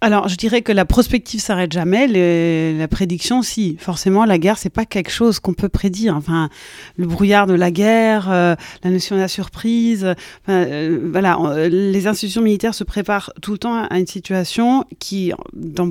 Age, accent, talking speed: 30-49, French, 190 wpm